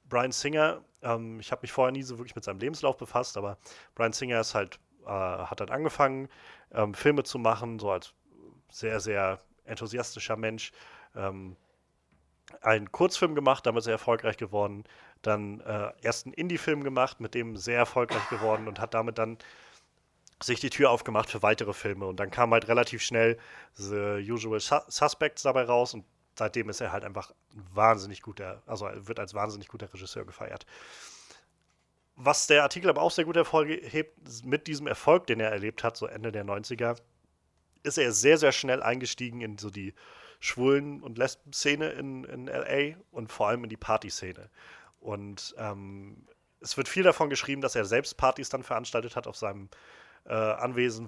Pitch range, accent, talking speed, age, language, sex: 105-130 Hz, German, 175 wpm, 30-49, German, male